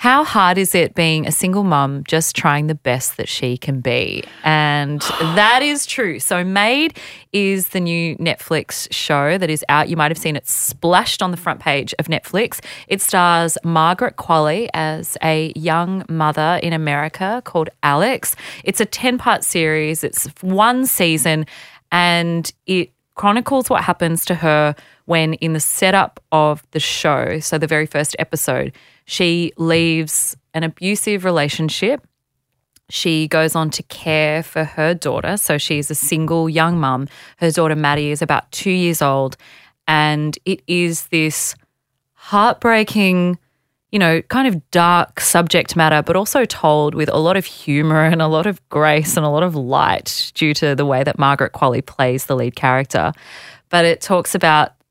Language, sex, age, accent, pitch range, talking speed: English, female, 30-49, Australian, 150-180 Hz, 165 wpm